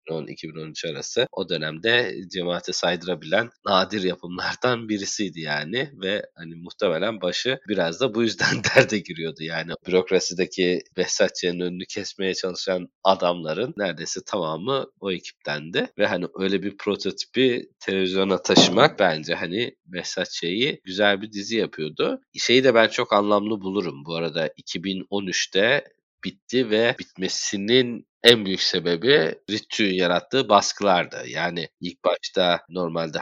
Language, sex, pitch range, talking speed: Turkish, male, 85-105 Hz, 120 wpm